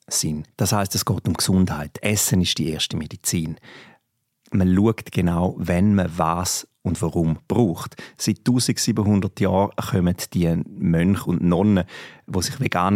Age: 40-59